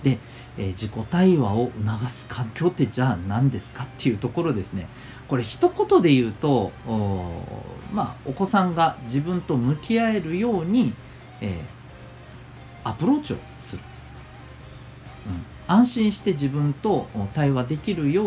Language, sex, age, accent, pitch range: Japanese, male, 40-59, native, 105-145 Hz